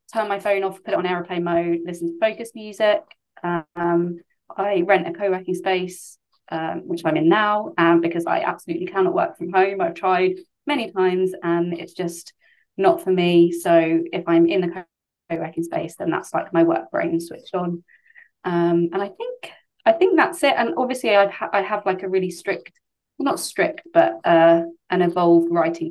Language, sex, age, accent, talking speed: English, female, 20-39, British, 190 wpm